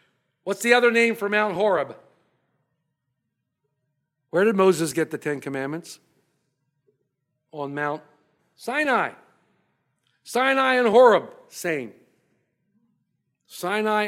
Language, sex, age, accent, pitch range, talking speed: English, male, 50-69, American, 190-260 Hz, 95 wpm